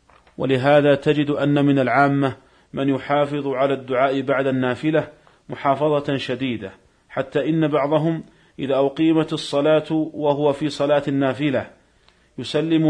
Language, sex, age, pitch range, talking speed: Arabic, male, 40-59, 130-150 Hz, 110 wpm